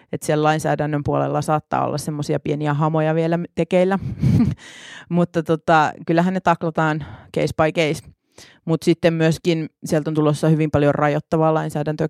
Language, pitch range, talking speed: Finnish, 145-155 Hz, 140 wpm